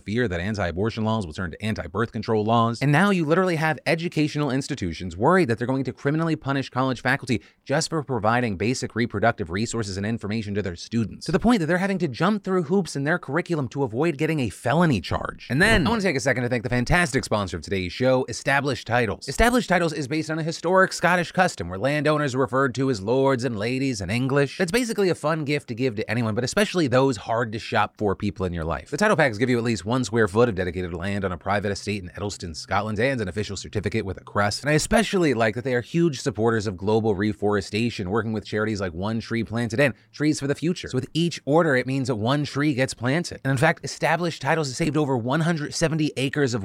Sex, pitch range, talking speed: male, 110-155 Hz, 240 wpm